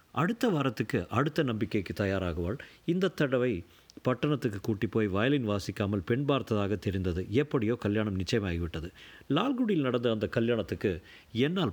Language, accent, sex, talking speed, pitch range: Tamil, native, male, 120 wpm, 105-140 Hz